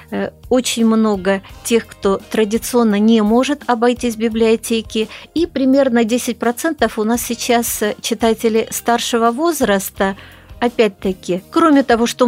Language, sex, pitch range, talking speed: Russian, female, 195-245 Hz, 115 wpm